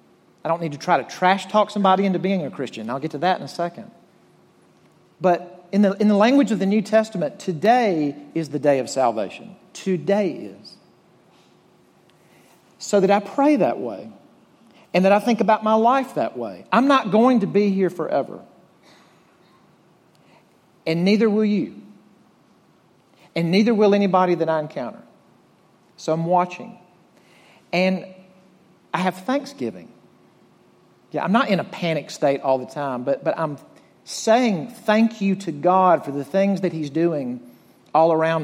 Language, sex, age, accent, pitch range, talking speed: English, male, 50-69, American, 160-215 Hz, 160 wpm